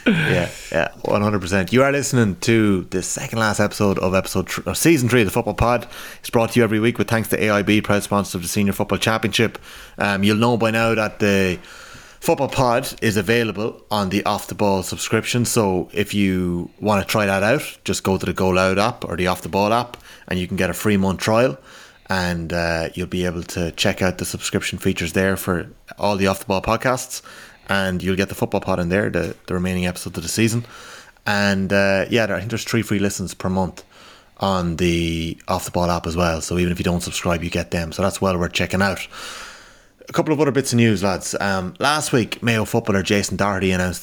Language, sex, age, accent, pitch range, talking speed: English, male, 30-49, Irish, 95-115 Hz, 230 wpm